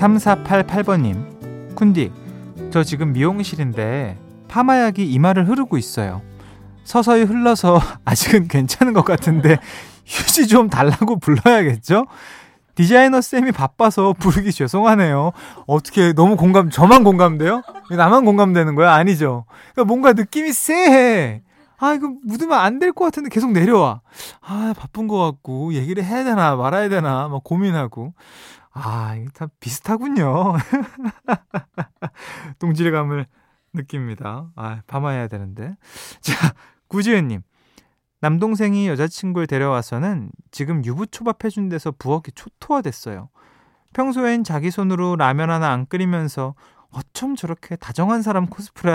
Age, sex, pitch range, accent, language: 20-39, male, 135-210 Hz, native, Korean